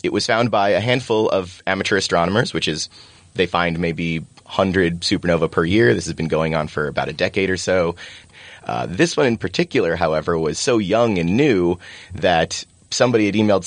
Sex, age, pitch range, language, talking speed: male, 30-49, 85-100 Hz, English, 195 wpm